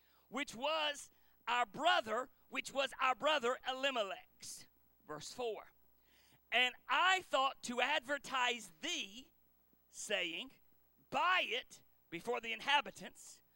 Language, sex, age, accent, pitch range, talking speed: English, male, 40-59, American, 200-295 Hz, 100 wpm